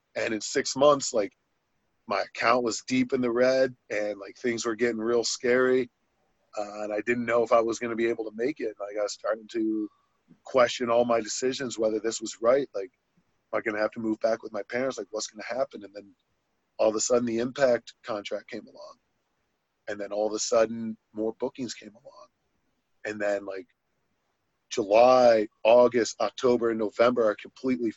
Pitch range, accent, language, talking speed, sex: 110-125 Hz, American, English, 200 wpm, male